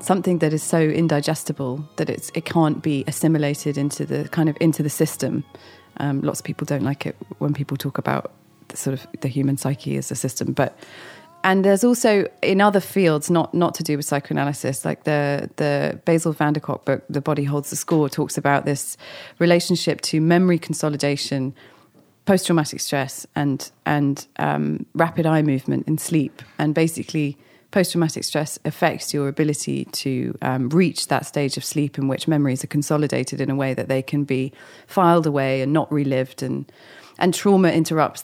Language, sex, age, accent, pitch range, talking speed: English, female, 30-49, British, 140-160 Hz, 180 wpm